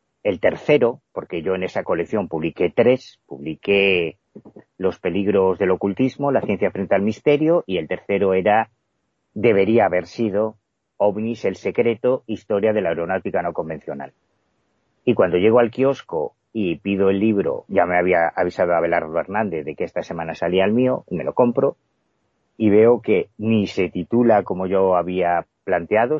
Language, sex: Spanish, male